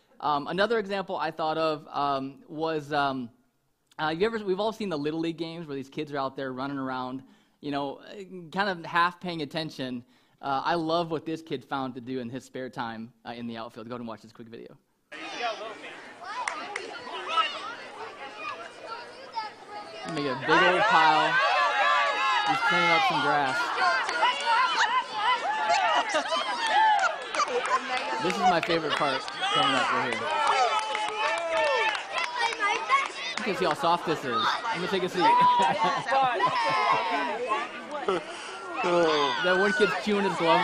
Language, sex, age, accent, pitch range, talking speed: English, male, 20-39, American, 140-205 Hz, 135 wpm